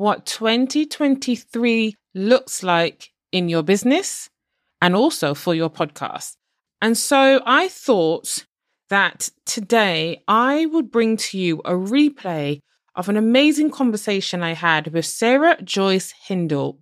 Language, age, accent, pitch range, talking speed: English, 20-39, British, 165-240 Hz, 125 wpm